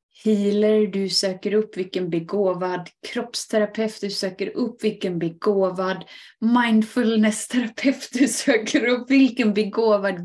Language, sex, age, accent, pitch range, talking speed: Swedish, female, 20-39, native, 190-235 Hz, 105 wpm